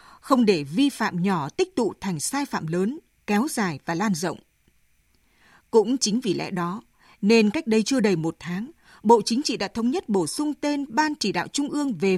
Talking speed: 210 wpm